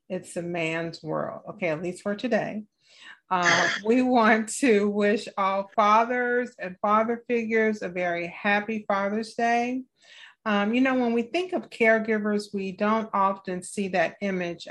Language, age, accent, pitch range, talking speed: English, 30-49, American, 185-225 Hz, 155 wpm